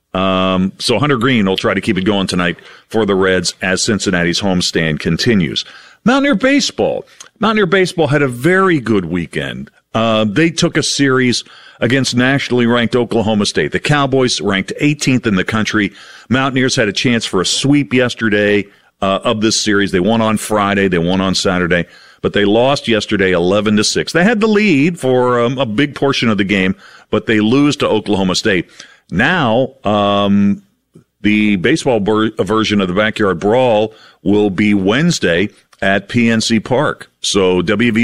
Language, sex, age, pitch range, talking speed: English, male, 50-69, 100-130 Hz, 165 wpm